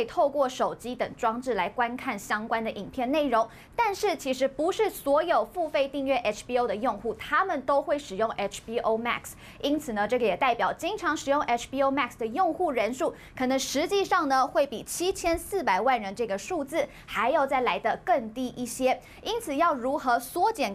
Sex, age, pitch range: female, 20-39, 235-325 Hz